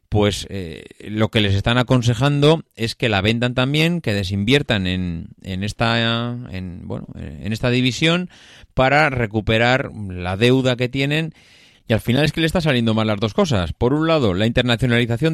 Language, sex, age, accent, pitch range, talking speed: Spanish, male, 30-49, Spanish, 100-125 Hz, 175 wpm